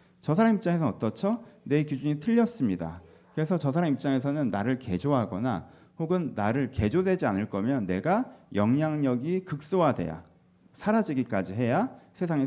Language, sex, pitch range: Korean, male, 105-170 Hz